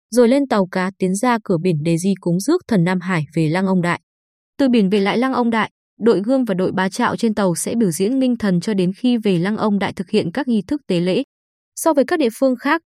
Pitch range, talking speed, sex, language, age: 185-245 Hz, 275 wpm, female, Vietnamese, 20-39